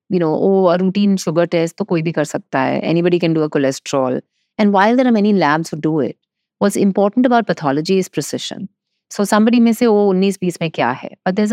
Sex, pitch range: female, 170-215 Hz